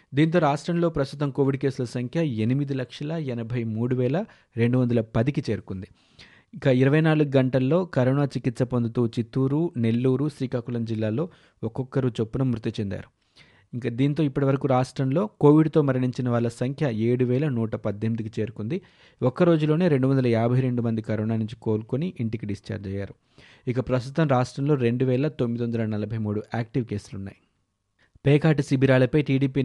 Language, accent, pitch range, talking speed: Telugu, native, 115-140 Hz, 125 wpm